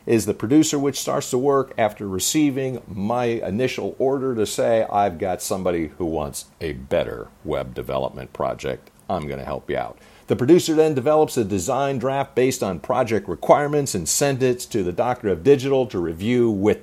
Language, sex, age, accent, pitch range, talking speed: English, male, 50-69, American, 100-140 Hz, 185 wpm